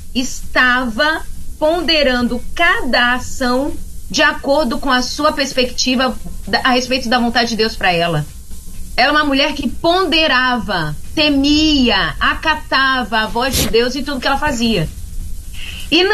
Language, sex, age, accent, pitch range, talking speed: Portuguese, female, 30-49, Brazilian, 210-295 Hz, 135 wpm